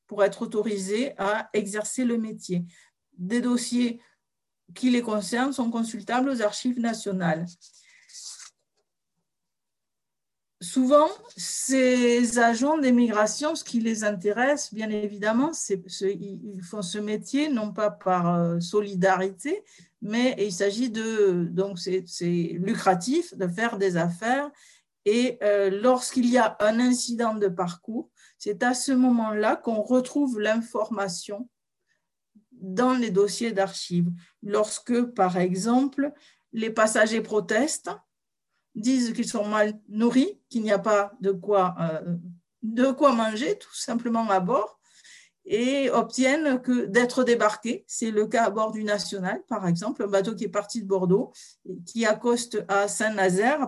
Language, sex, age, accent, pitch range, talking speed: French, female, 50-69, French, 200-245 Hz, 135 wpm